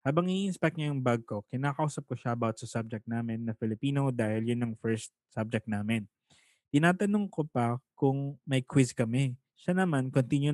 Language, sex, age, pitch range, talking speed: English, male, 20-39, 120-150 Hz, 175 wpm